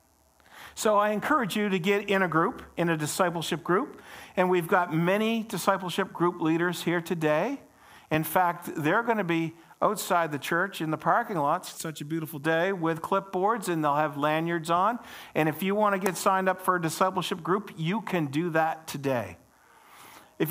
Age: 50-69